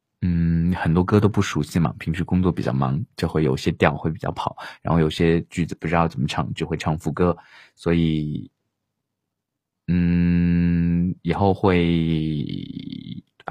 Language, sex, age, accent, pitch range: Chinese, male, 20-39, native, 80-100 Hz